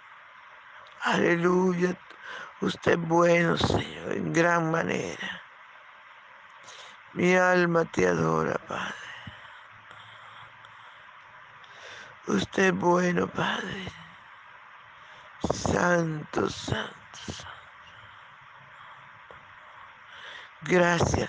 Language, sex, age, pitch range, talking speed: Spanish, male, 60-79, 170-195 Hz, 60 wpm